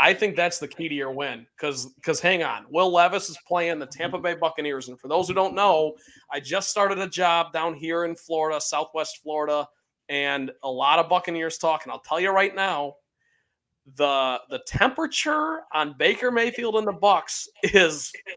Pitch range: 145-190 Hz